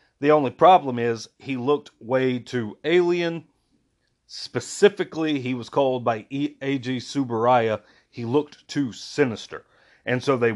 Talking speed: 130 wpm